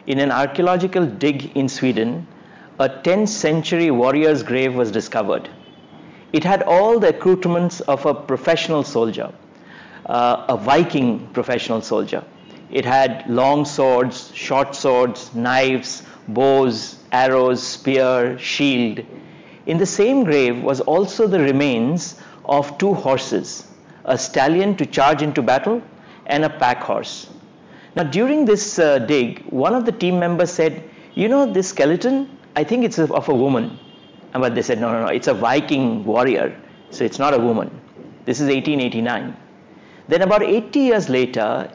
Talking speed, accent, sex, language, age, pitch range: 150 wpm, Indian, male, English, 50-69, 130-180 Hz